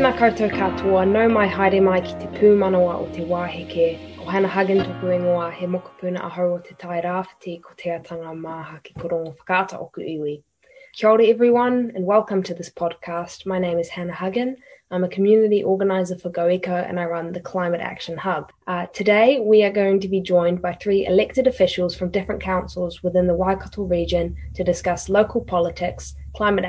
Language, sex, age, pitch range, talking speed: English, female, 20-39, 175-200 Hz, 110 wpm